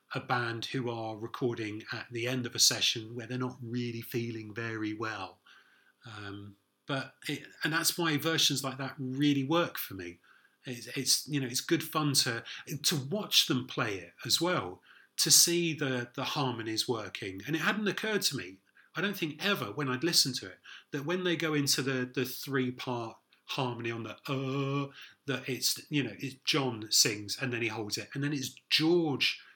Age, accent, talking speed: 30-49, British, 195 wpm